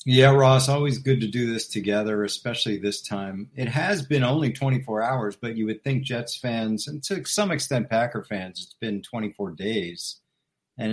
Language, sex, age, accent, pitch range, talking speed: English, male, 50-69, American, 105-130 Hz, 185 wpm